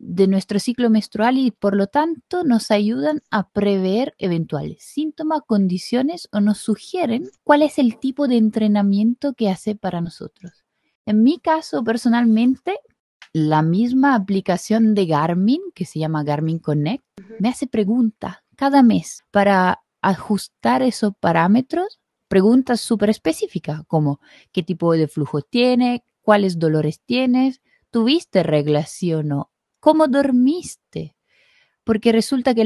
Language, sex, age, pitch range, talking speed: Spanish, female, 20-39, 185-250 Hz, 135 wpm